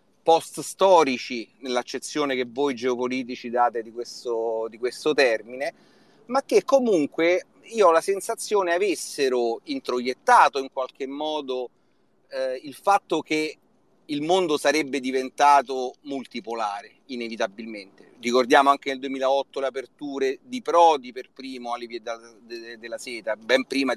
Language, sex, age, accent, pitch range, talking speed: Italian, male, 40-59, native, 125-195 Hz, 120 wpm